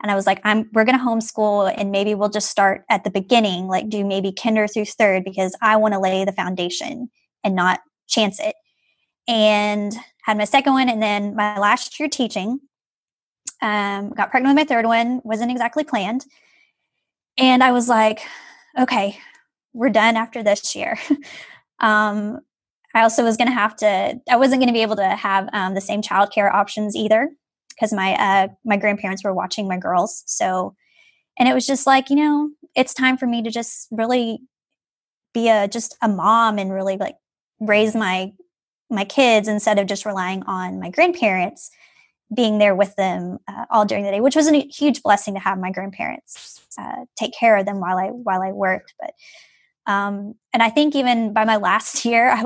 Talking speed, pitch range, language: 195 wpm, 200-245 Hz, English